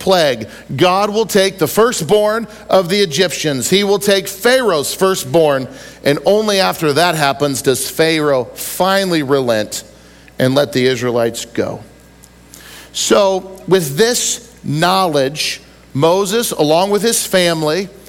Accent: American